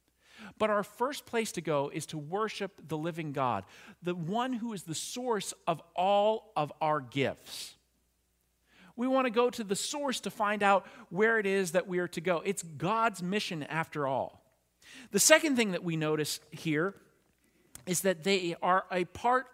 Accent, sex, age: American, male, 50-69